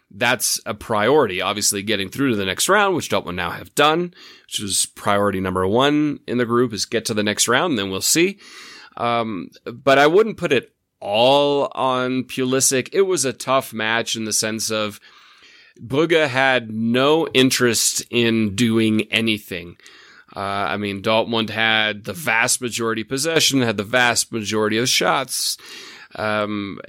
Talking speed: 165 wpm